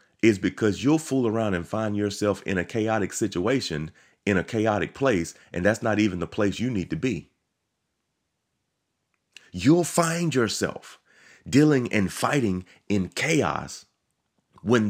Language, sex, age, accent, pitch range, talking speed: English, male, 30-49, American, 95-125 Hz, 140 wpm